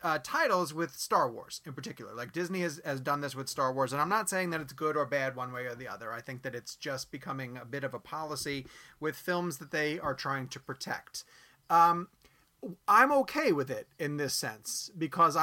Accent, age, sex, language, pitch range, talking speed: American, 30-49, male, English, 130-165 Hz, 225 wpm